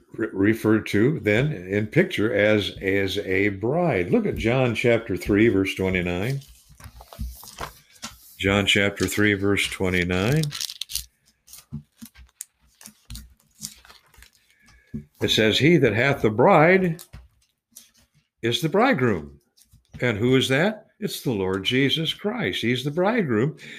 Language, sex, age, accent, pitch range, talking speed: English, male, 60-79, American, 100-140 Hz, 110 wpm